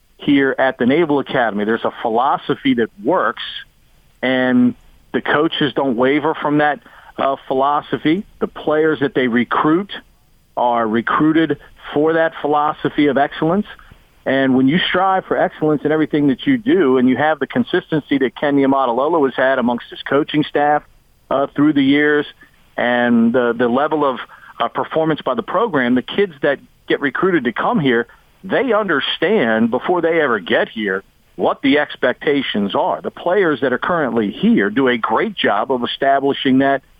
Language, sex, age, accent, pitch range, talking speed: English, male, 50-69, American, 130-155 Hz, 165 wpm